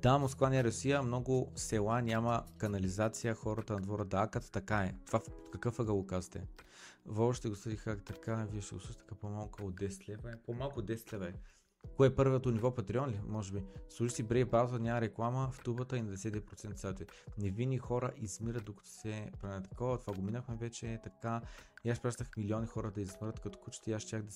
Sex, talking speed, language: male, 205 wpm, Bulgarian